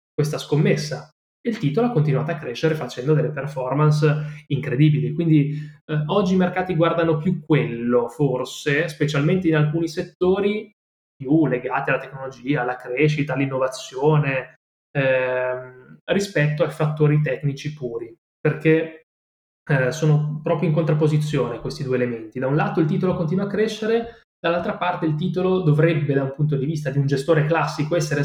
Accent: native